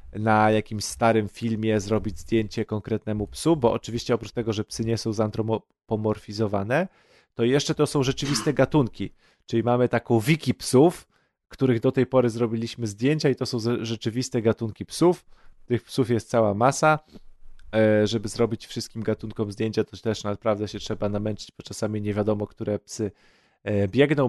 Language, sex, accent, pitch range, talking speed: Polish, male, native, 110-140 Hz, 155 wpm